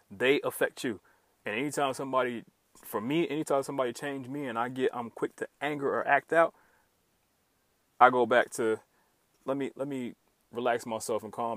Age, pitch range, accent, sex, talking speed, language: 30-49, 120-140 Hz, American, male, 175 wpm, English